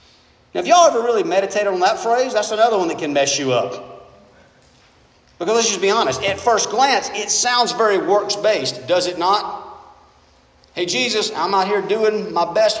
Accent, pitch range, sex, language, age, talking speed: American, 160-230 Hz, male, English, 40-59, 190 wpm